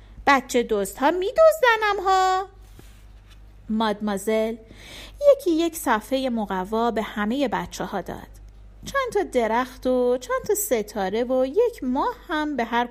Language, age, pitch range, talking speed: Persian, 40-59, 220-315 Hz, 130 wpm